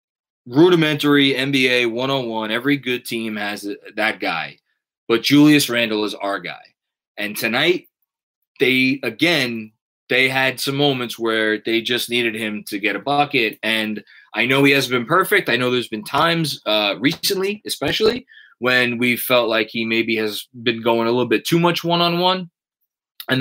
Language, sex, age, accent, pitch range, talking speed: English, male, 20-39, American, 120-155 Hz, 165 wpm